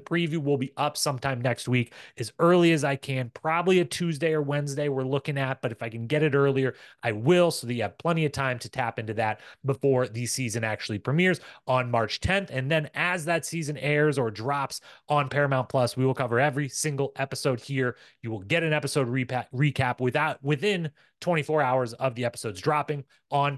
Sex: male